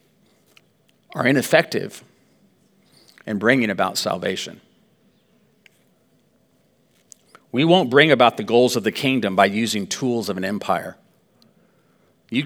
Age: 50-69